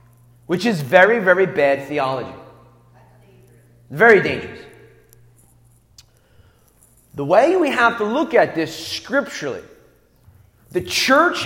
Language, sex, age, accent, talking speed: English, male, 30-49, American, 100 wpm